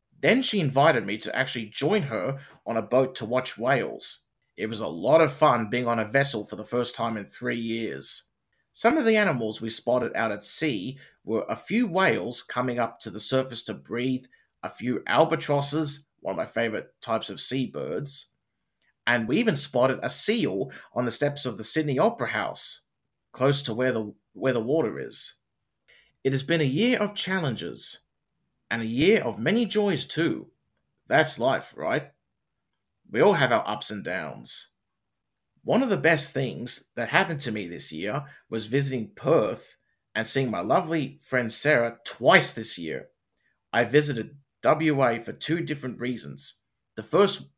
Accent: Australian